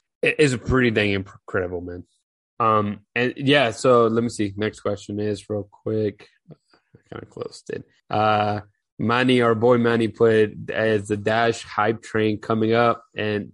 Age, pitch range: 20-39, 105-120 Hz